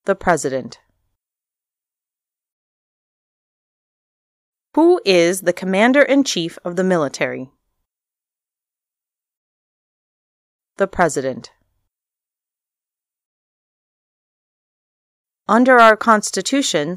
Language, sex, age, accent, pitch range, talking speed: English, female, 30-49, American, 155-230 Hz, 50 wpm